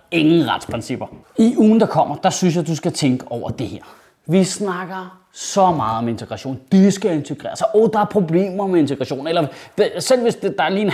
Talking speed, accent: 215 wpm, native